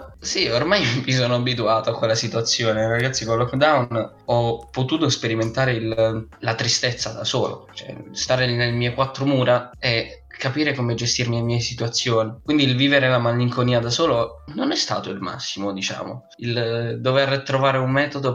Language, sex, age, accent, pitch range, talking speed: Italian, male, 10-29, native, 115-130 Hz, 165 wpm